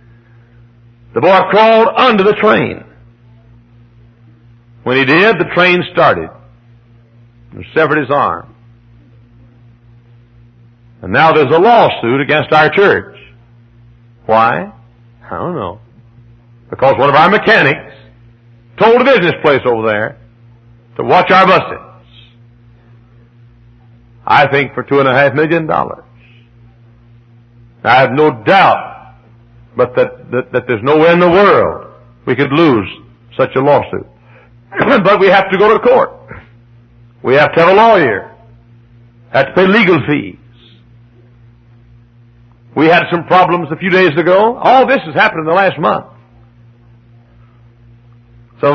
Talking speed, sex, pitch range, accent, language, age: 130 wpm, male, 120-150 Hz, American, English, 60-79